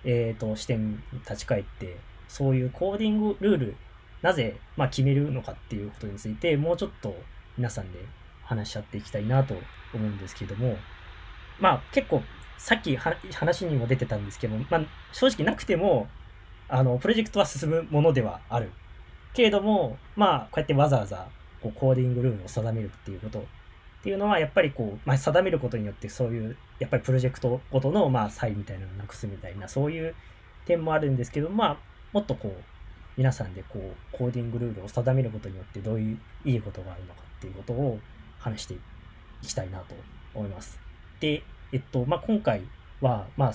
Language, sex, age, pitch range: Japanese, male, 20-39, 100-130 Hz